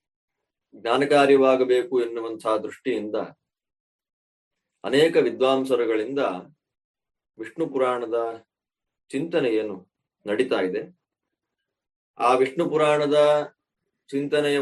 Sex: male